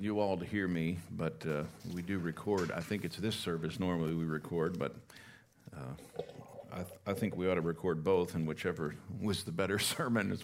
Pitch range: 100-130 Hz